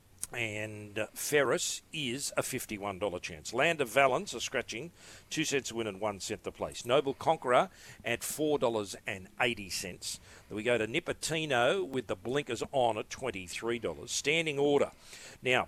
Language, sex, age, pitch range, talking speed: English, male, 50-69, 105-130 Hz, 140 wpm